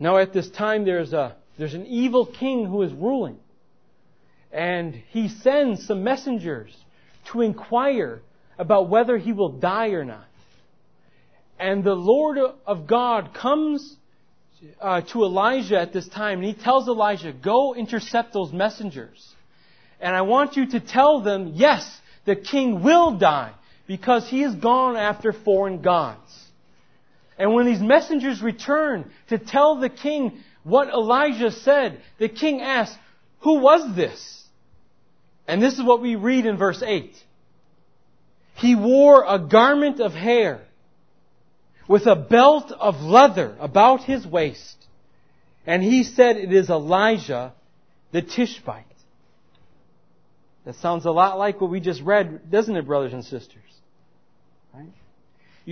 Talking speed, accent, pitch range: 140 wpm, American, 180-250 Hz